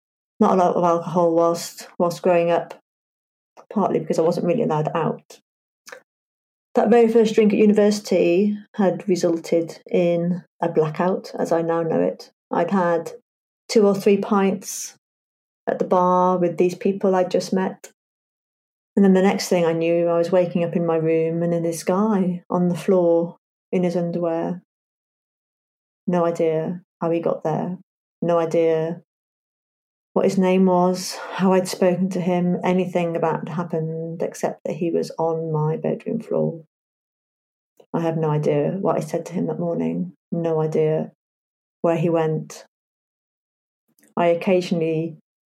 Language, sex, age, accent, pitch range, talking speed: English, female, 30-49, British, 165-190 Hz, 155 wpm